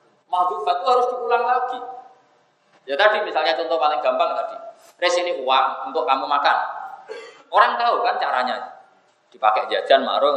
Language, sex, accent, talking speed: Indonesian, male, native, 145 wpm